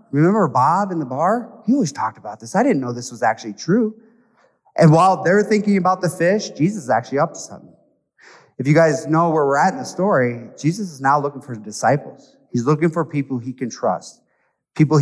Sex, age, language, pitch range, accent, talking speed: male, 30-49, English, 120-170 Hz, American, 220 wpm